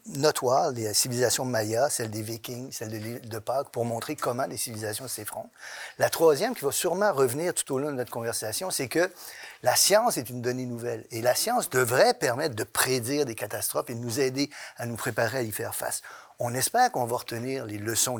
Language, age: French, 50-69